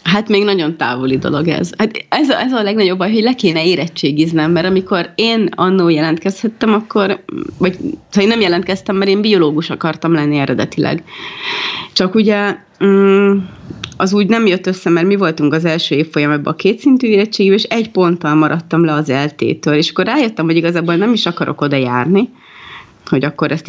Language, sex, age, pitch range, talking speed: Hungarian, female, 30-49, 160-200 Hz, 175 wpm